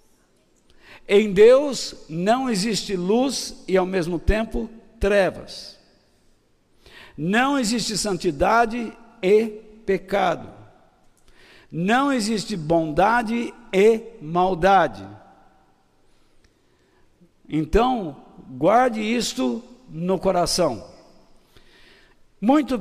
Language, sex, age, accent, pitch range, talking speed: Portuguese, male, 60-79, Brazilian, 180-230 Hz, 70 wpm